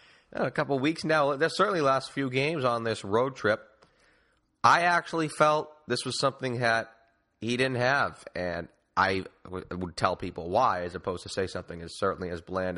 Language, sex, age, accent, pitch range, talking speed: English, male, 30-49, American, 100-125 Hz, 190 wpm